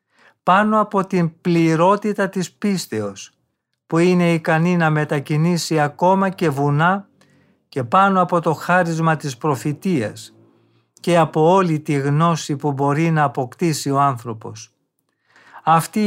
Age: 50-69